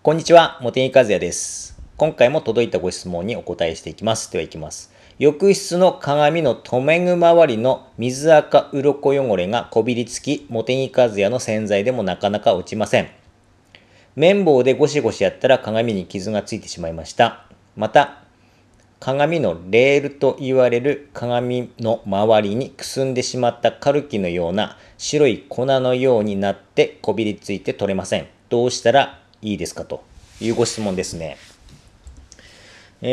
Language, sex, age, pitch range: Japanese, male, 40-59, 105-145 Hz